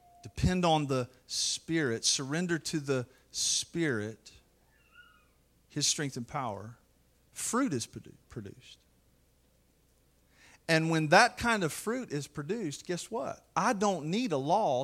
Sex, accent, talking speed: male, American, 120 wpm